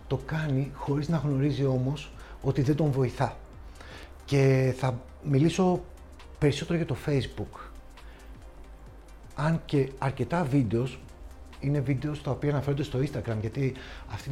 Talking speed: 125 wpm